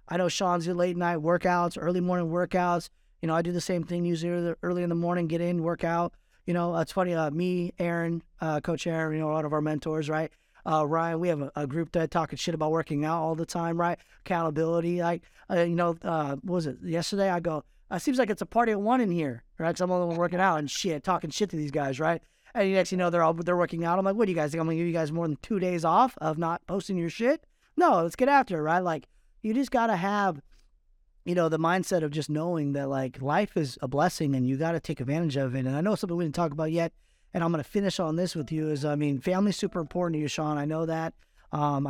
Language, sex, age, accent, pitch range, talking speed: English, male, 20-39, American, 150-175 Hz, 280 wpm